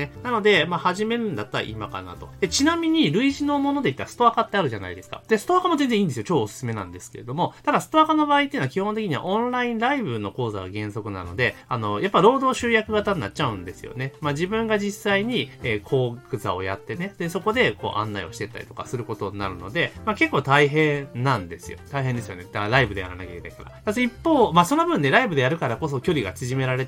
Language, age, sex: Japanese, 30-49, male